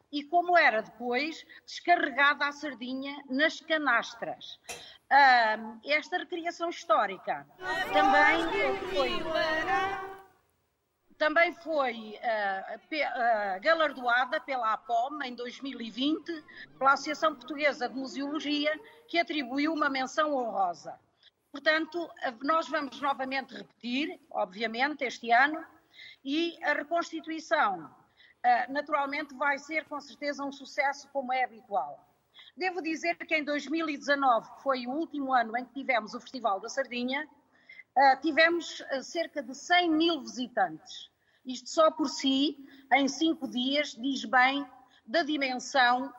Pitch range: 250-320 Hz